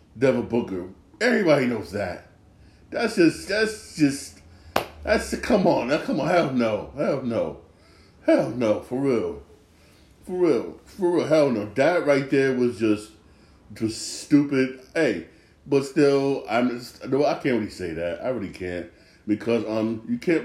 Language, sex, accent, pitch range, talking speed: English, male, American, 100-130 Hz, 160 wpm